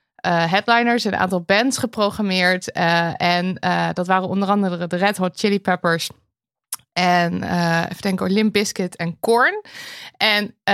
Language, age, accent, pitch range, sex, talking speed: Dutch, 20-39, Dutch, 180-230 Hz, female, 160 wpm